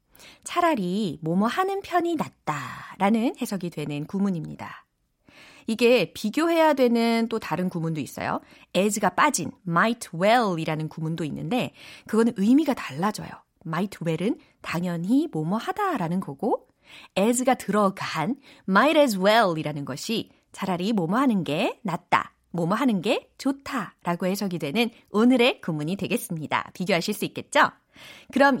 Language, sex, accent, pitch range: Korean, female, native, 175-260 Hz